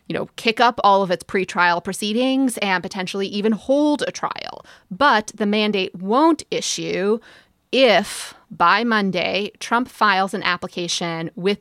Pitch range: 175-225 Hz